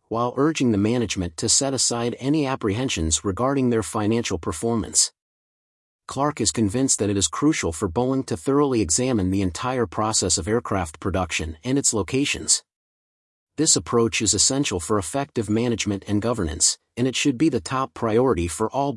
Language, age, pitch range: English, 40-59, 95-130 Hz